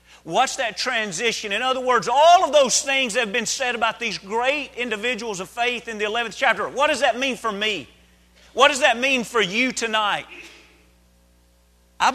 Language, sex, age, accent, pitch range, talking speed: English, male, 40-59, American, 160-240 Hz, 190 wpm